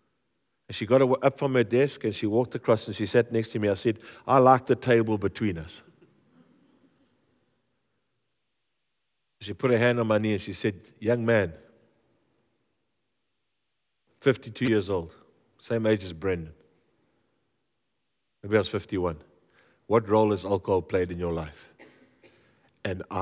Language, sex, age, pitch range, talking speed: English, male, 50-69, 95-115 Hz, 145 wpm